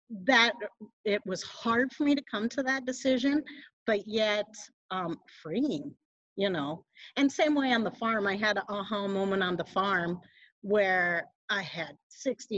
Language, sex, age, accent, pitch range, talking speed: English, female, 50-69, American, 205-275 Hz, 165 wpm